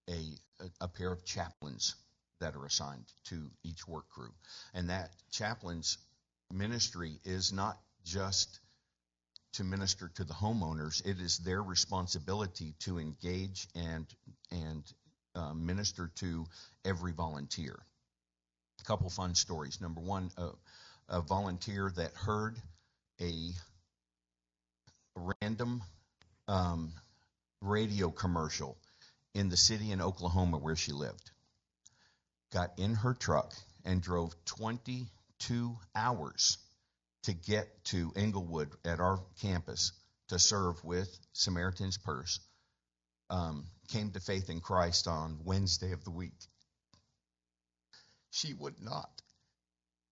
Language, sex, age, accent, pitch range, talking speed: English, male, 50-69, American, 80-105 Hz, 115 wpm